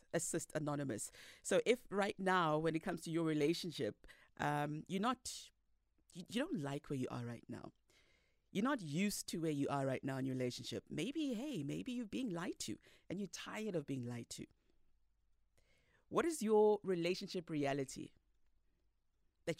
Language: English